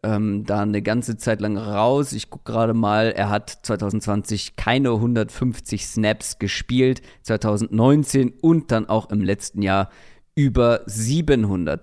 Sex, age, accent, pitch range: male, 40-59, German, 110-145 Hz